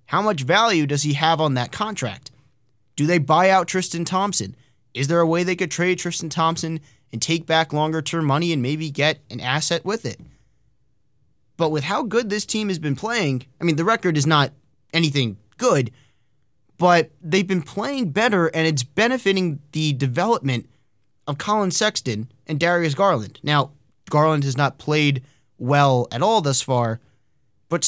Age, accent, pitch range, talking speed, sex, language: 20-39, American, 130-170 Hz, 175 wpm, male, English